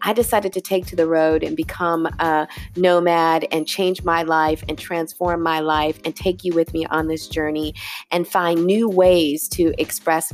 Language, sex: English, female